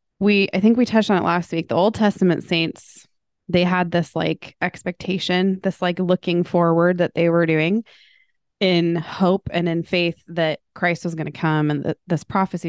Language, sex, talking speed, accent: English, female, 195 wpm, American